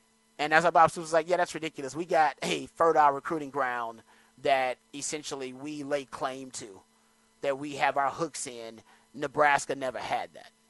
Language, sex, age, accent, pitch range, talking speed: English, male, 30-49, American, 130-155 Hz, 175 wpm